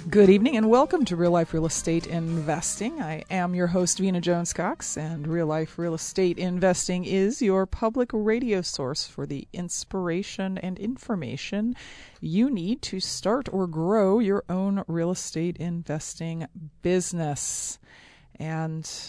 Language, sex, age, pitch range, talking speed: English, female, 40-59, 160-200 Hz, 140 wpm